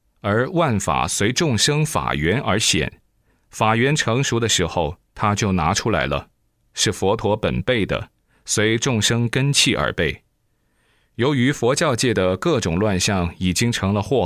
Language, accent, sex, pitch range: Chinese, native, male, 90-120 Hz